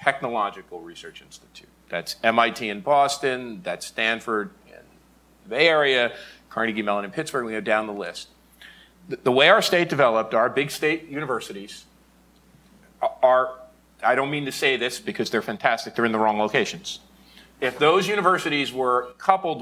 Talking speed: 160 wpm